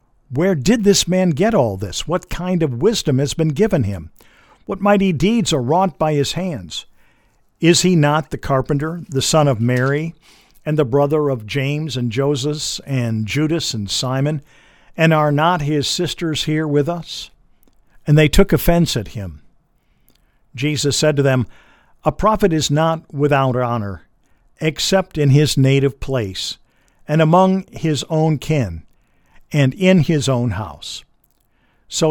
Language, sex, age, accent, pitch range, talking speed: English, male, 50-69, American, 125-165 Hz, 155 wpm